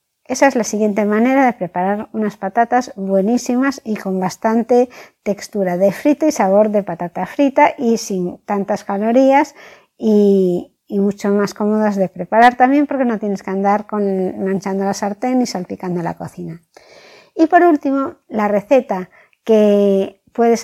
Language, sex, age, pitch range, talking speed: Spanish, female, 60-79, 200-265 Hz, 150 wpm